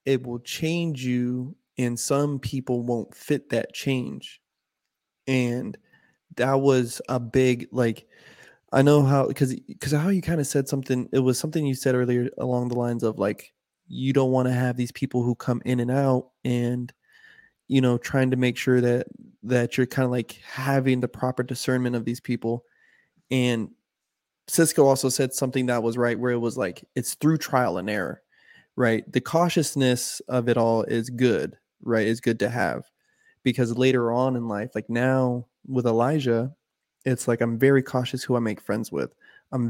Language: English